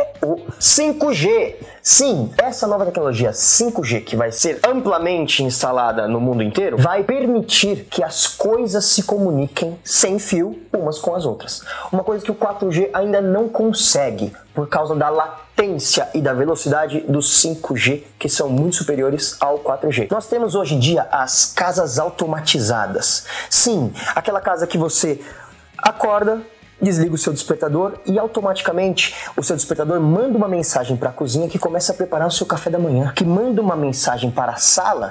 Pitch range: 150-220 Hz